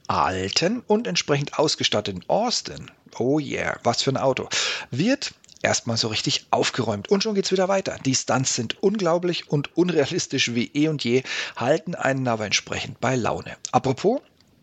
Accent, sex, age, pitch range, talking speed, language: German, male, 40-59, 115-175 Hz, 160 wpm, German